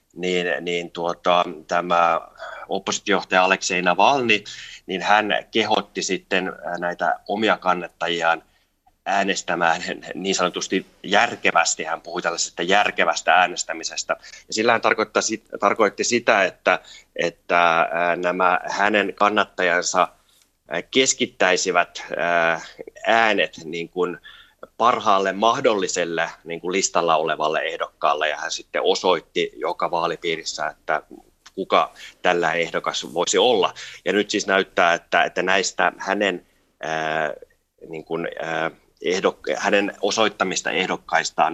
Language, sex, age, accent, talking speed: Finnish, male, 30-49, native, 90 wpm